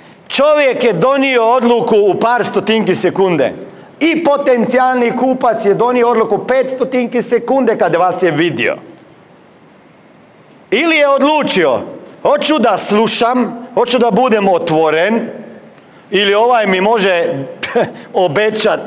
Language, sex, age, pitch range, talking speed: Croatian, male, 40-59, 165-245 Hz, 120 wpm